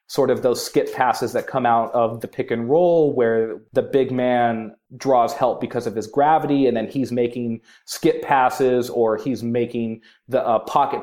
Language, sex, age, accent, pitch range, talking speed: English, male, 30-49, American, 115-150 Hz, 190 wpm